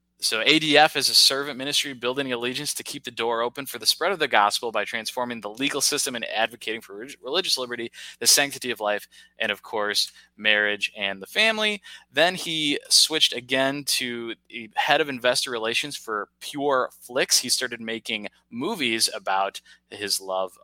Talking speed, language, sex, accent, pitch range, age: 170 wpm, English, male, American, 110-135 Hz, 20-39